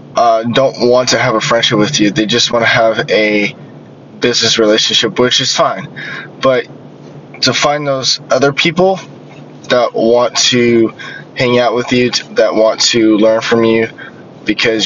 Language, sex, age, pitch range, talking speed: English, male, 10-29, 110-125 Hz, 160 wpm